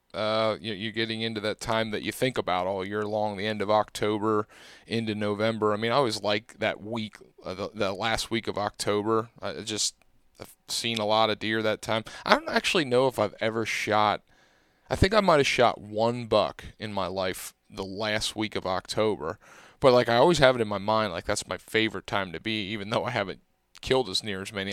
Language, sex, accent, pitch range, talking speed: English, male, American, 105-115 Hz, 220 wpm